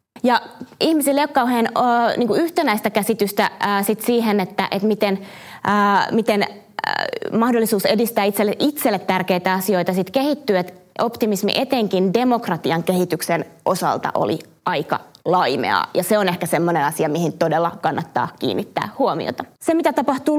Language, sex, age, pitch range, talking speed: Finnish, female, 20-39, 185-230 Hz, 140 wpm